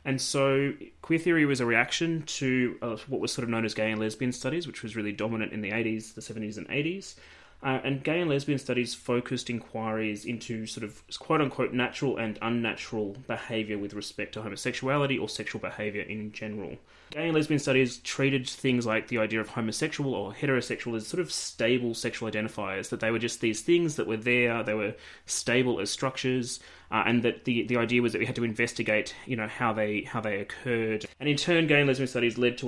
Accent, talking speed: Australian, 215 wpm